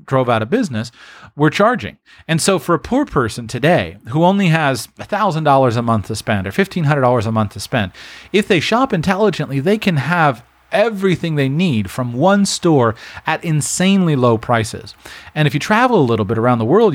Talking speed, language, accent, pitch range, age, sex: 190 wpm, English, American, 115-165 Hz, 30-49, male